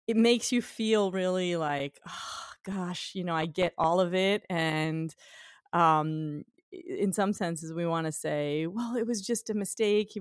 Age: 30-49